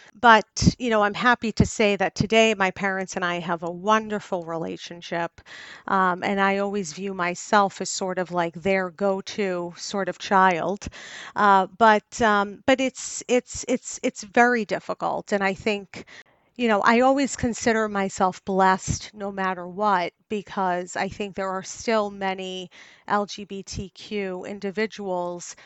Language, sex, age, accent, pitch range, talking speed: English, female, 40-59, American, 190-225 Hz, 150 wpm